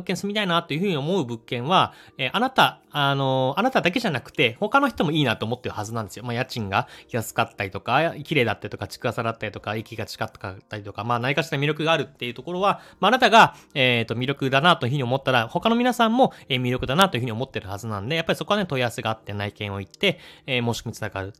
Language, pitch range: Japanese, 115-180 Hz